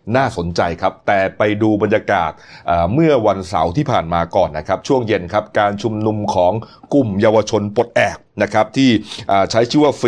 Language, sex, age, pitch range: Thai, male, 30-49, 100-130 Hz